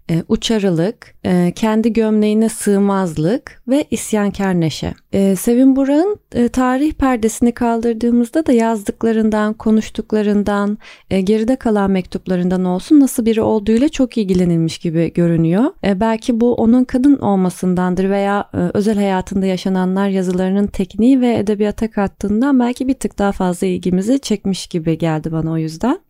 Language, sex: Turkish, female